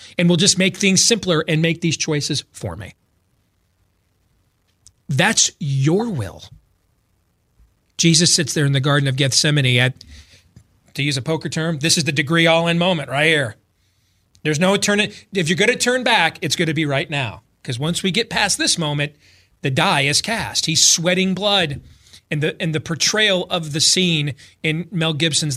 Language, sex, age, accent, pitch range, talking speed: English, male, 40-59, American, 120-170 Hz, 180 wpm